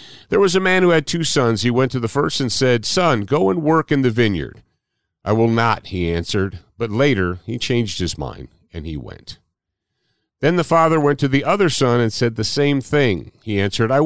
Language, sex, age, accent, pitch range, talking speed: English, male, 50-69, American, 90-140 Hz, 220 wpm